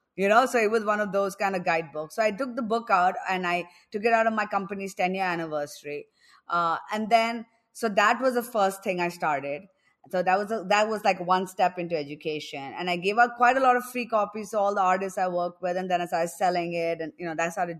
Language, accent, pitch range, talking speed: English, Indian, 180-245 Hz, 265 wpm